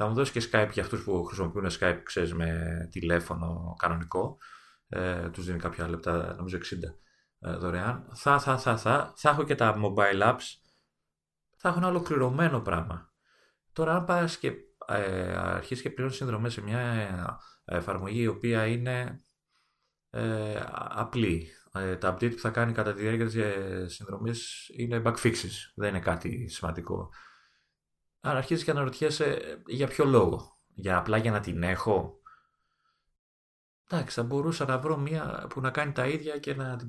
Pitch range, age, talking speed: 95-130 Hz, 30-49, 165 wpm